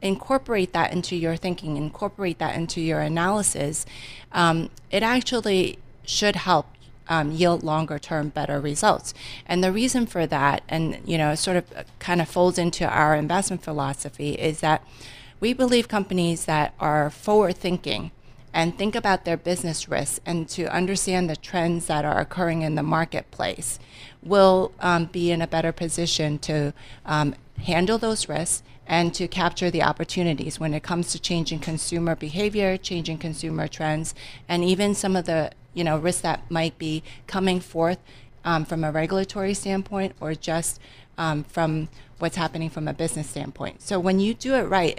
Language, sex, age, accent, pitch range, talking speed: English, female, 30-49, American, 150-180 Hz, 165 wpm